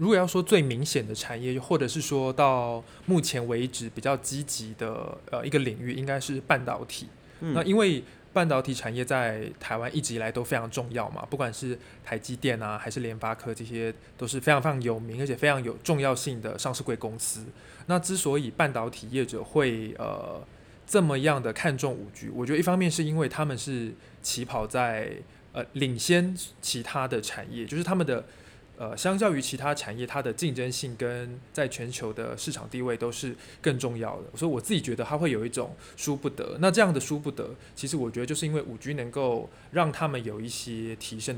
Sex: male